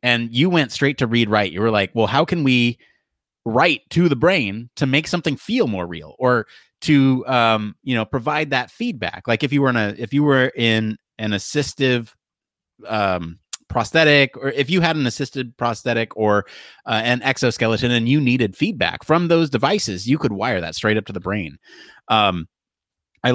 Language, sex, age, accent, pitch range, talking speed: English, male, 30-49, American, 110-145 Hz, 195 wpm